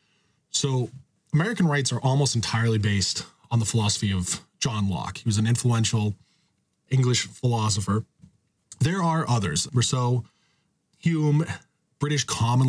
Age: 20-39